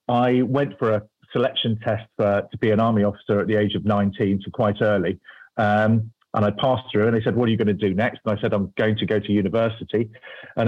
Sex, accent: male, British